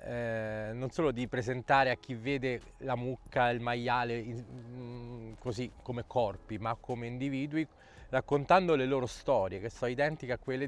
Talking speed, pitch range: 150 wpm, 115-135 Hz